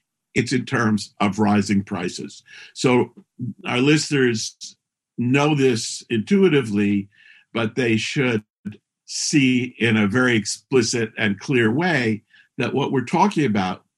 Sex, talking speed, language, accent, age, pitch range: male, 120 wpm, English, American, 50-69, 110-150 Hz